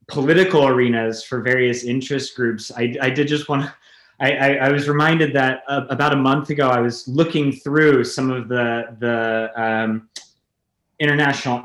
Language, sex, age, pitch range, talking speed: English, male, 30-49, 115-140 Hz, 165 wpm